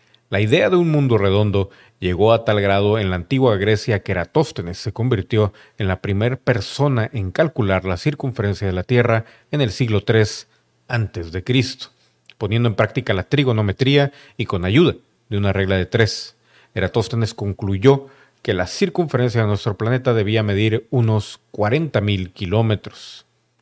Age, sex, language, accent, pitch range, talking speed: 40-59, male, Spanish, Mexican, 105-125 Hz, 150 wpm